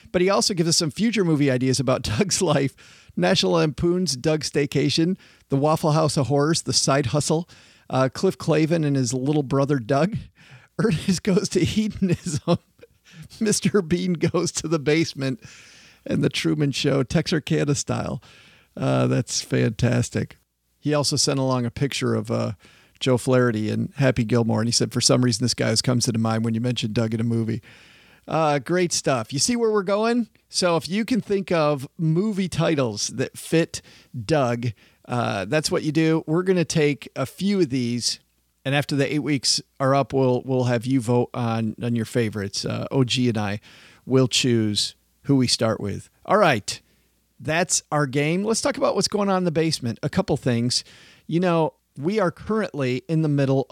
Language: English